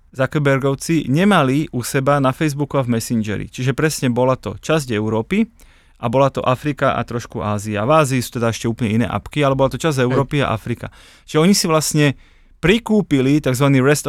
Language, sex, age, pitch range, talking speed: Slovak, male, 30-49, 120-145 Hz, 185 wpm